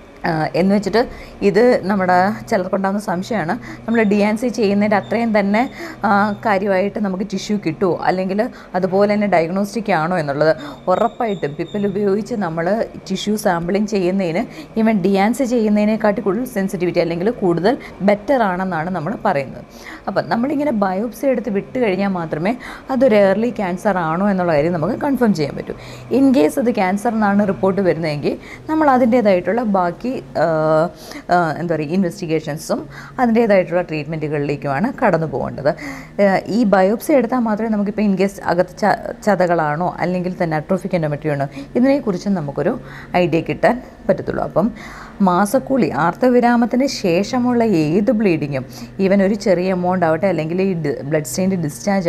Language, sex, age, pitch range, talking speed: Malayalam, female, 20-39, 175-220 Hz, 120 wpm